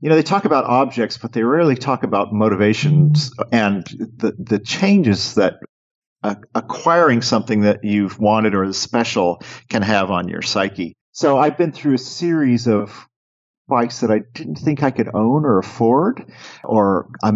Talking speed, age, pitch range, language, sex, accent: 175 wpm, 40-59, 100-125 Hz, English, male, American